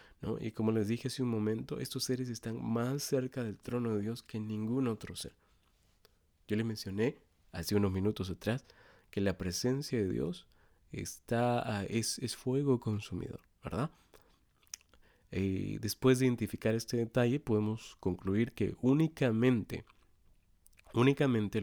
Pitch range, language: 105-130 Hz, Spanish